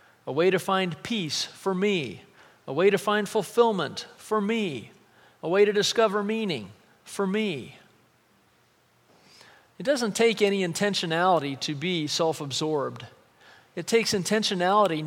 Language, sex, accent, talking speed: English, male, American, 125 wpm